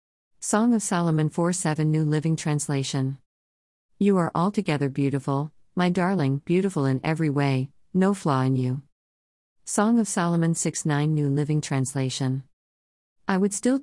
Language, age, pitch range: English, 50-69, 130-175 Hz